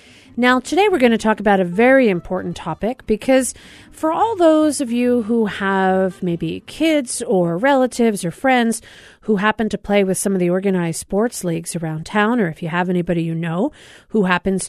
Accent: American